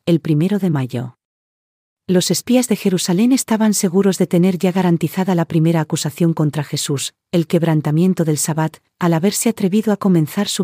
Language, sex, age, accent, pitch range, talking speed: Spanish, female, 40-59, Spanish, 160-195 Hz, 165 wpm